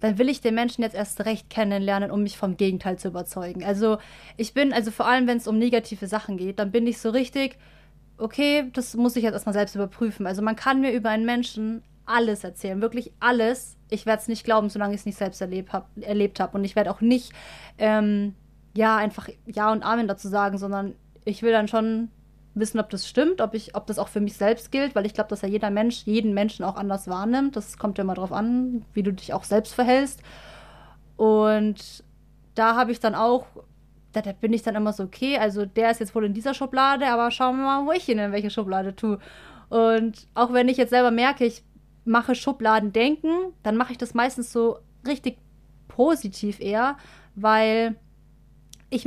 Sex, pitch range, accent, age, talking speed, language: female, 205-240 Hz, German, 20-39, 215 wpm, German